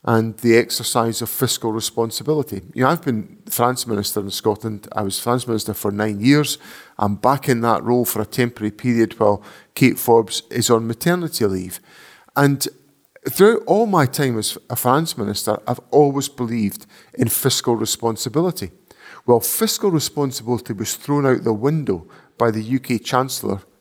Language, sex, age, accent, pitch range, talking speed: English, male, 50-69, British, 115-145 Hz, 160 wpm